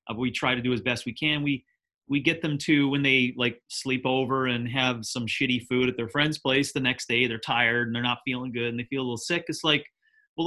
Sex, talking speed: male, 265 wpm